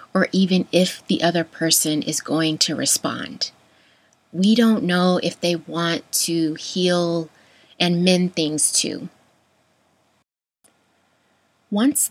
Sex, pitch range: female, 165-195 Hz